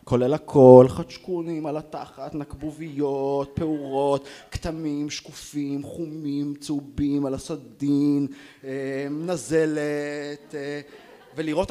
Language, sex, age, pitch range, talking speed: Hebrew, male, 30-49, 115-150 Hz, 75 wpm